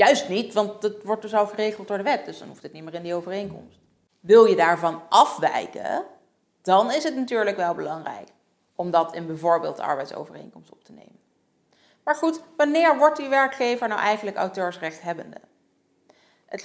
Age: 40-59